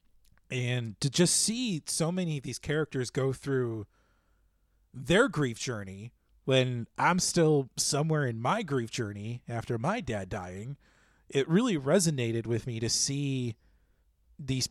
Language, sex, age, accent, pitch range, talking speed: English, male, 30-49, American, 120-155 Hz, 140 wpm